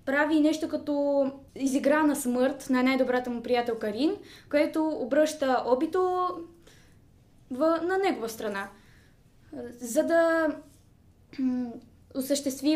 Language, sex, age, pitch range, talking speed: Bulgarian, female, 20-39, 235-290 Hz, 100 wpm